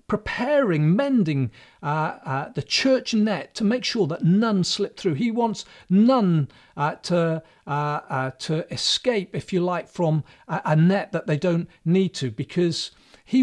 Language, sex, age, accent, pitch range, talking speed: English, male, 40-59, British, 150-215 Hz, 165 wpm